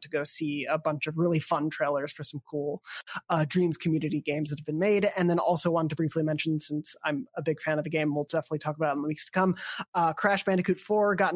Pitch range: 155-180 Hz